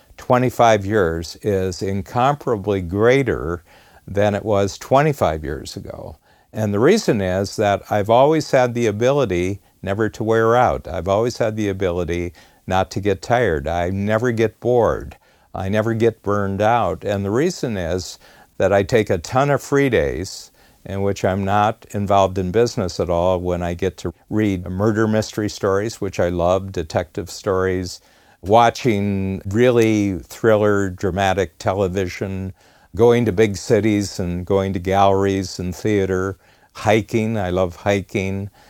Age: 60-79